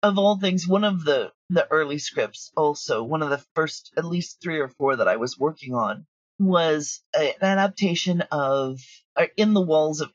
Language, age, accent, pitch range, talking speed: English, 40-59, American, 150-190 Hz, 195 wpm